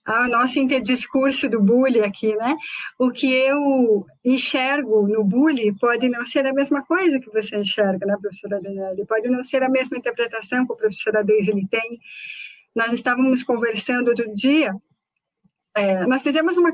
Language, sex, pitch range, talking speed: Portuguese, female, 215-275 Hz, 160 wpm